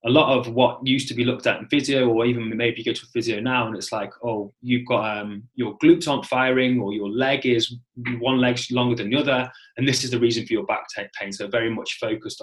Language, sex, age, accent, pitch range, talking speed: English, male, 20-39, British, 110-130 Hz, 260 wpm